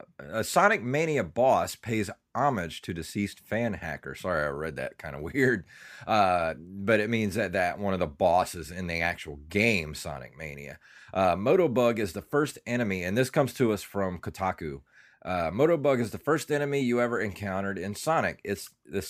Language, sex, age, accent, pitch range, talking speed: English, male, 30-49, American, 90-120 Hz, 180 wpm